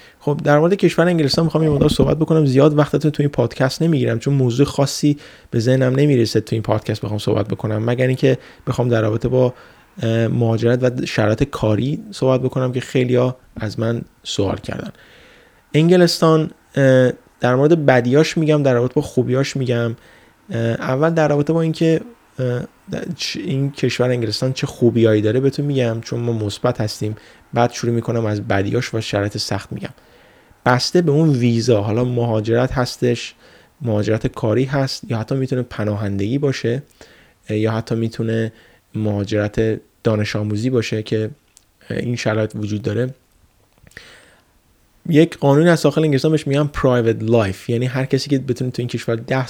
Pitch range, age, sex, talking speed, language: 110-135 Hz, 20-39, male, 160 wpm, Persian